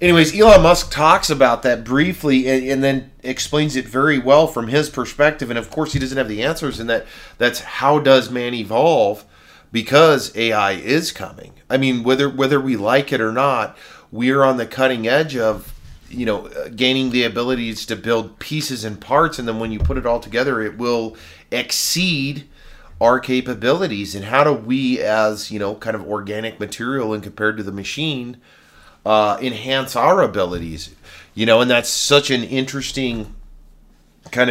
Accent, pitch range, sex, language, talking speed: American, 105-135 Hz, male, English, 180 wpm